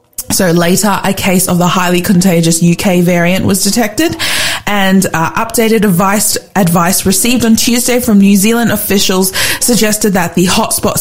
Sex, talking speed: female, 155 wpm